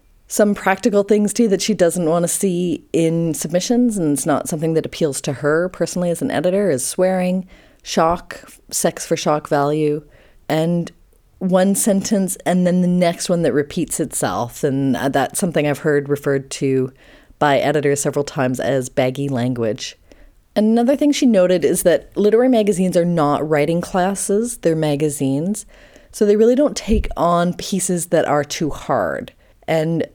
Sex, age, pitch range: female, 30-49, 145-190 Hz